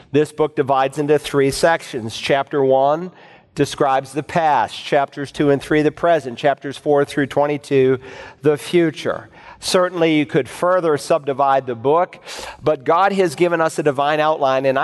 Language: English